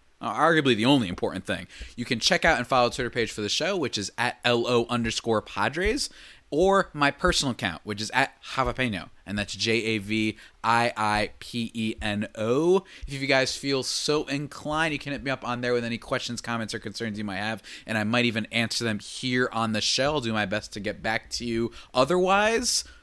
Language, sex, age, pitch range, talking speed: English, male, 20-39, 115-155 Hz, 200 wpm